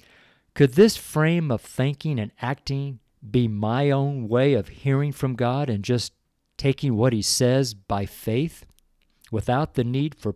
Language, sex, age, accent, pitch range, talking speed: English, male, 50-69, American, 105-135 Hz, 155 wpm